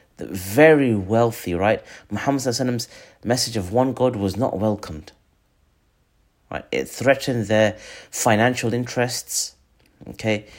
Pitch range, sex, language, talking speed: 100-120 Hz, male, Arabic, 110 wpm